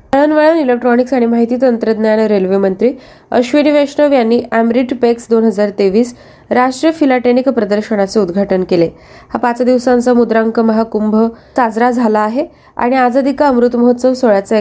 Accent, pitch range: native, 200-255 Hz